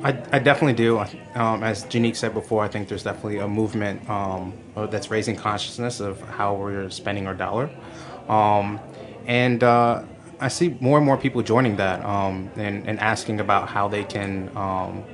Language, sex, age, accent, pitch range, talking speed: English, male, 20-39, American, 100-120 Hz, 180 wpm